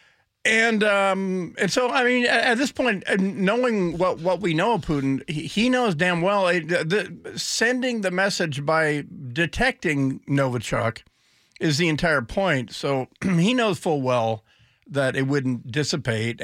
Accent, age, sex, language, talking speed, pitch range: American, 50-69, male, English, 155 wpm, 140-195 Hz